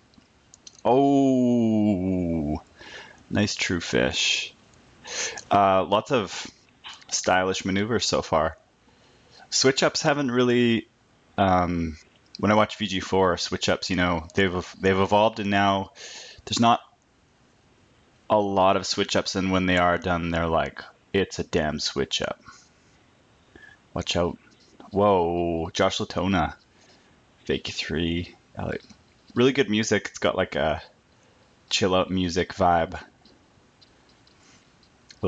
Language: English